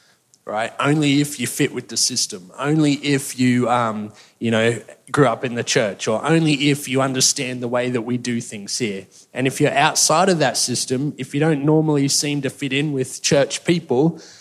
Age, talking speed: 20-39, 210 wpm